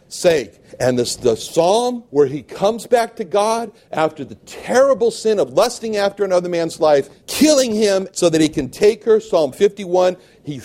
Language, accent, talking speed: English, American, 180 wpm